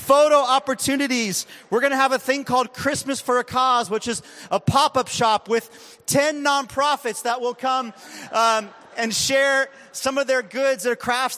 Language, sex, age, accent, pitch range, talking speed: English, male, 30-49, American, 170-255 Hz, 175 wpm